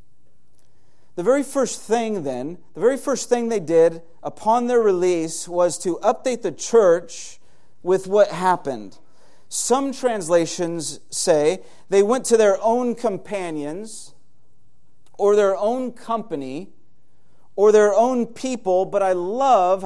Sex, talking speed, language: male, 125 wpm, English